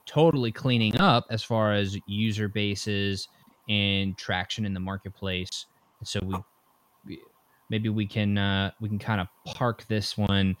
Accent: American